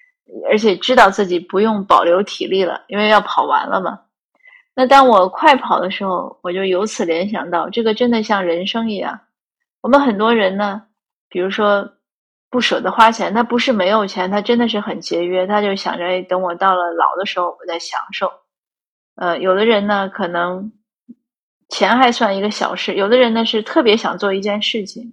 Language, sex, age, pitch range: Chinese, female, 30-49, 180-230 Hz